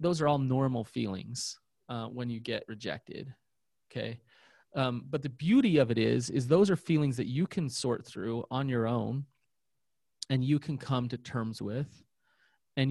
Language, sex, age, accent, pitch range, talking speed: English, male, 30-49, American, 120-140 Hz, 175 wpm